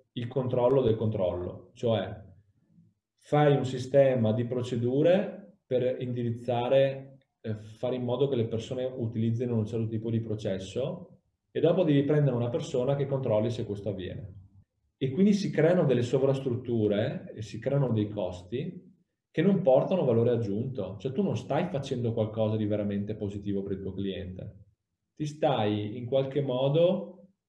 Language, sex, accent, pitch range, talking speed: Italian, male, native, 105-135 Hz, 155 wpm